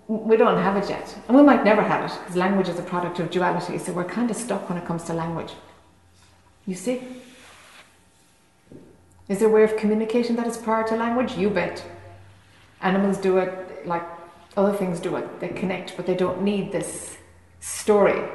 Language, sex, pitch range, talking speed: English, female, 165-215 Hz, 195 wpm